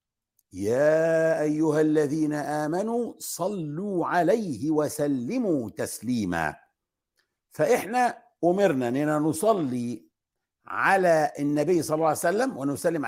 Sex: male